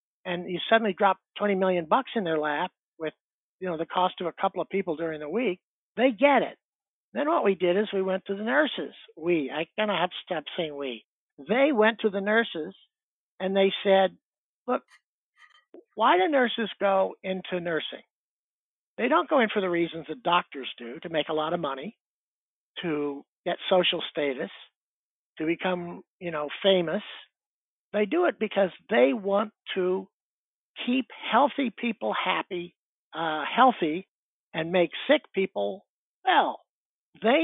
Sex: male